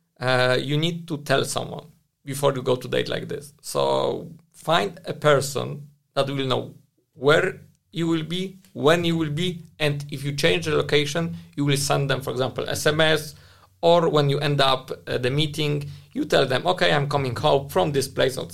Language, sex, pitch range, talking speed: English, male, 130-155 Hz, 195 wpm